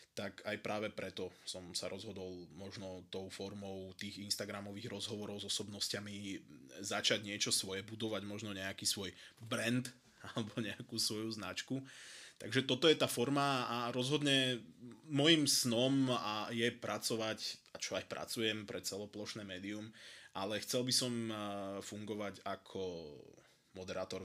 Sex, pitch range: male, 95-115 Hz